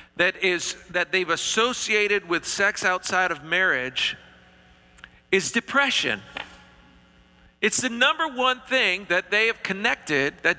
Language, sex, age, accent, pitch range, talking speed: English, male, 50-69, American, 175-220 Hz, 125 wpm